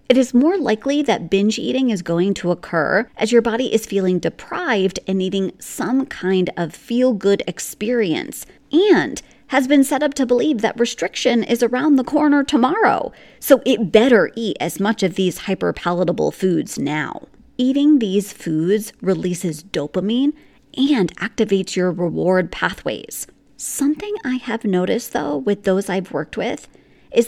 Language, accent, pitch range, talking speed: English, American, 180-245 Hz, 155 wpm